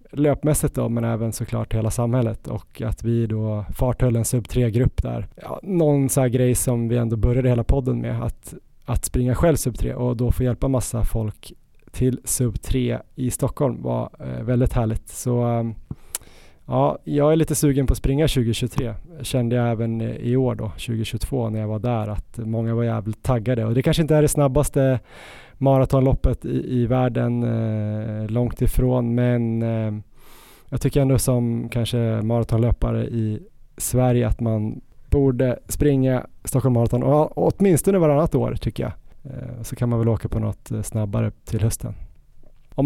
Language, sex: Swedish, male